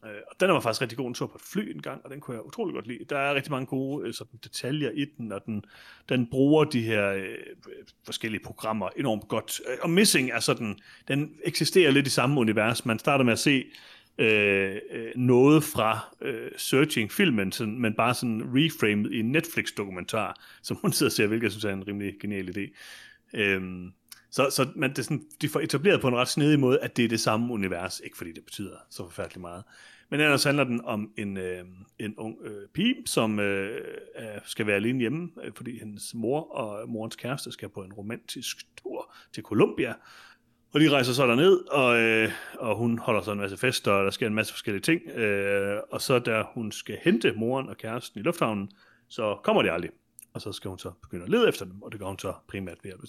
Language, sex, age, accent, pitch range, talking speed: Danish, male, 30-49, native, 105-135 Hz, 220 wpm